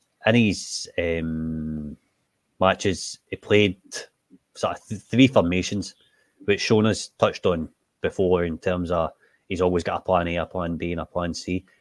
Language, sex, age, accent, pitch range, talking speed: English, male, 30-49, British, 90-105 Hz, 170 wpm